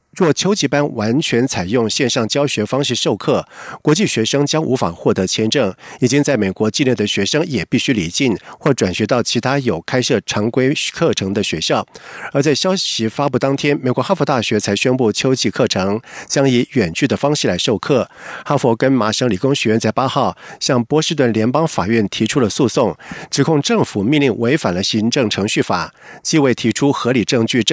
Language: German